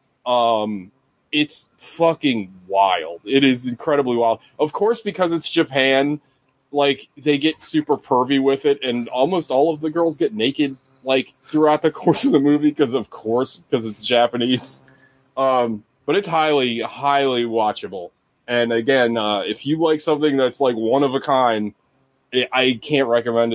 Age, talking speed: 20-39, 160 wpm